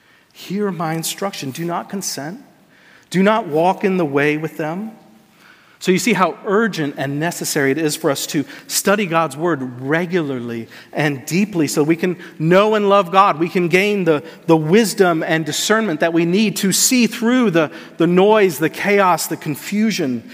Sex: male